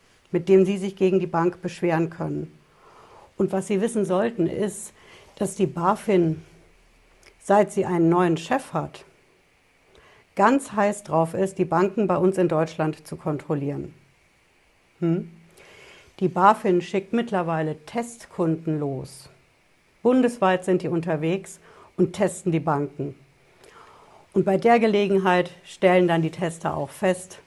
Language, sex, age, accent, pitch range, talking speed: German, female, 60-79, German, 165-195 Hz, 135 wpm